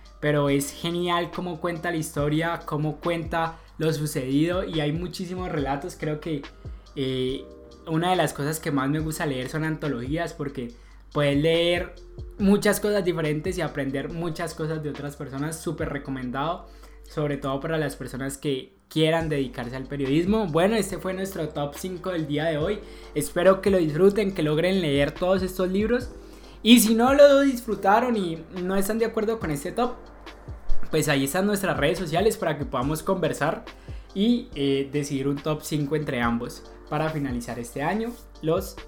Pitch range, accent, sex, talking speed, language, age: 145-195 Hz, Colombian, male, 170 wpm, Spanish, 10-29